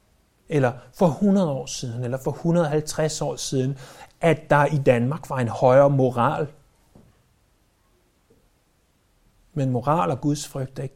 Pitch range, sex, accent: 135-185 Hz, male, native